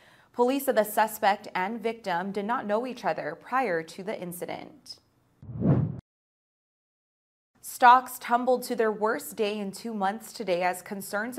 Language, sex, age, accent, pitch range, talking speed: English, female, 20-39, American, 185-225 Hz, 140 wpm